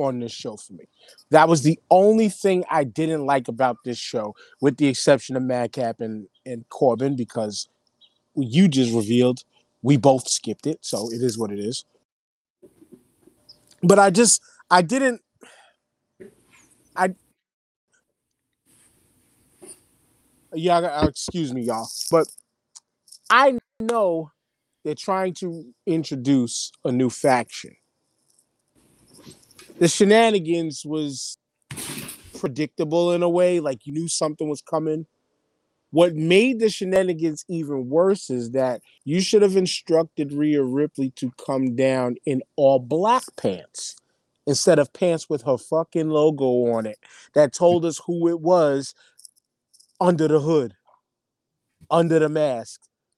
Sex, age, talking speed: male, 30-49, 130 wpm